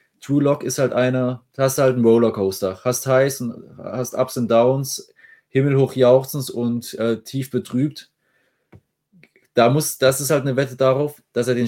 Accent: German